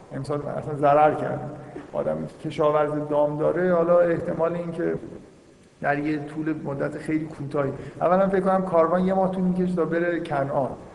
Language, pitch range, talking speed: Persian, 140-165 Hz, 155 wpm